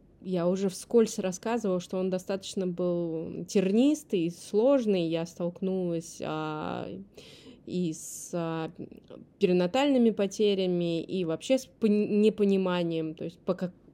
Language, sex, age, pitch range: Russian, female, 20-39, 170-210 Hz